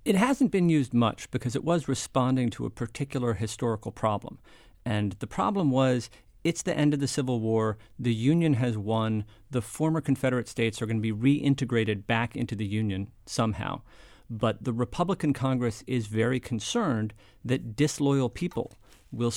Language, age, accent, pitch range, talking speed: English, 40-59, American, 110-130 Hz, 165 wpm